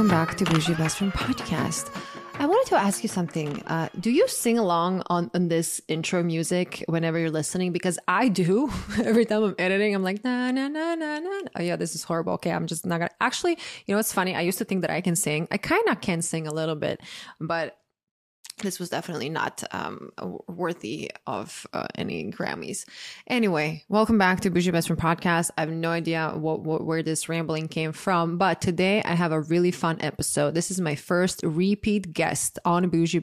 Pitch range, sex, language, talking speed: 160-190 Hz, female, English, 210 wpm